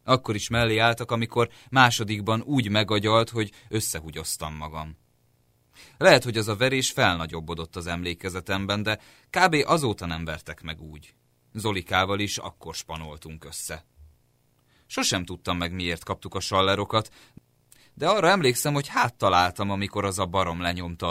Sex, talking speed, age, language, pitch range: male, 140 wpm, 30-49, Hungarian, 85-120 Hz